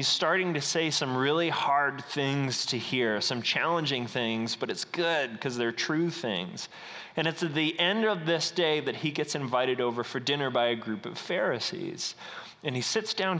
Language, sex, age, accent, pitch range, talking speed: English, male, 30-49, American, 130-205 Hz, 195 wpm